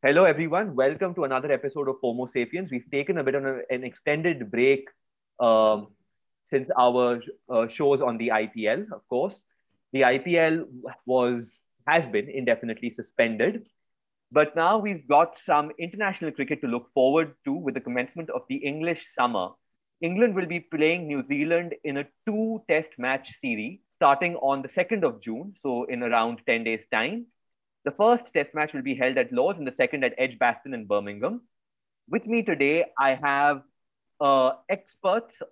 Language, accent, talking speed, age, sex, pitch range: English, Indian, 165 wpm, 30-49, male, 130-180 Hz